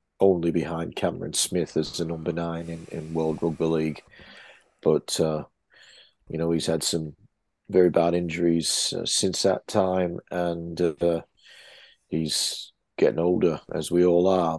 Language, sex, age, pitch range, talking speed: English, male, 40-59, 85-95 Hz, 150 wpm